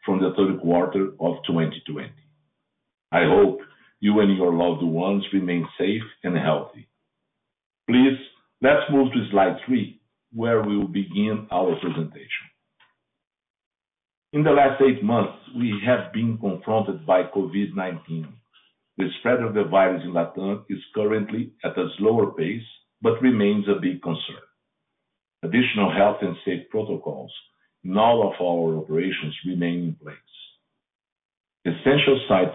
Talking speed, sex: 135 wpm, male